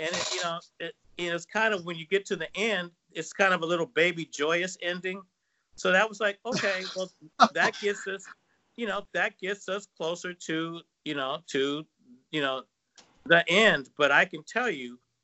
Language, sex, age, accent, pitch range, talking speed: English, male, 50-69, American, 135-180 Hz, 195 wpm